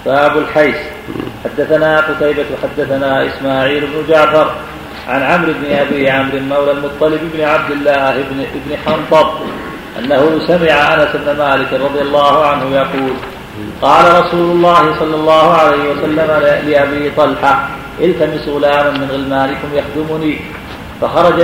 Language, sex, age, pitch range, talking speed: Arabic, male, 40-59, 140-155 Hz, 125 wpm